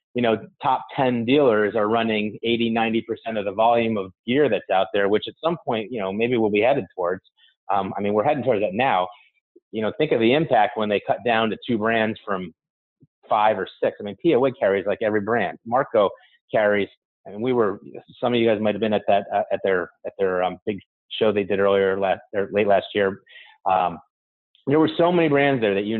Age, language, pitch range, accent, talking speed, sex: 30-49, English, 105-130 Hz, American, 230 wpm, male